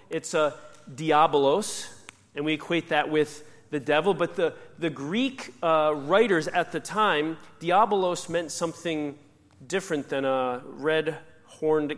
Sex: male